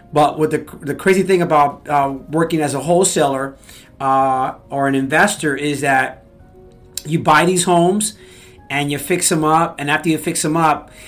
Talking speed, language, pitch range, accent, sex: 180 wpm, English, 135-170 Hz, American, male